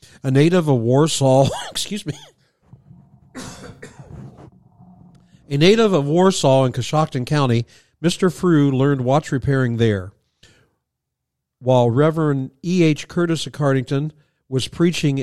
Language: English